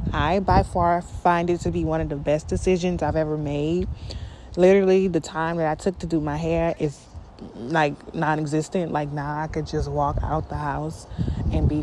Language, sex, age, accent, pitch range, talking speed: English, female, 20-39, American, 145-175 Hz, 200 wpm